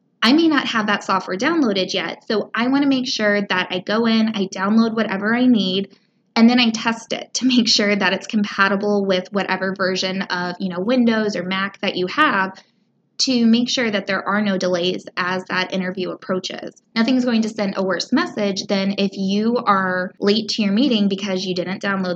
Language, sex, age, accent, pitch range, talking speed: English, female, 20-39, American, 190-225 Hz, 205 wpm